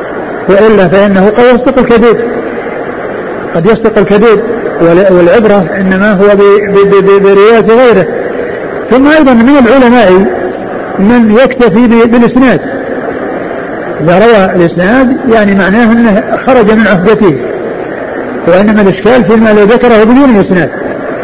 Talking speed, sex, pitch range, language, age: 100 wpm, male, 185-230 Hz, Arabic, 50-69